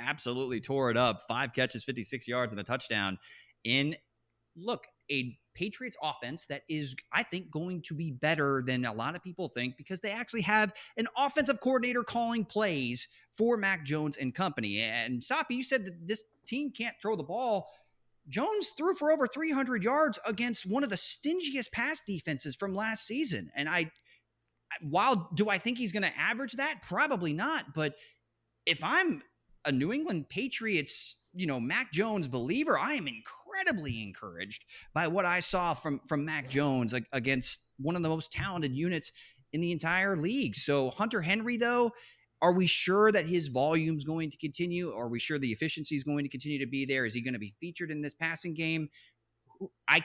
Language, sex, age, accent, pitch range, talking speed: English, male, 30-49, American, 140-215 Hz, 185 wpm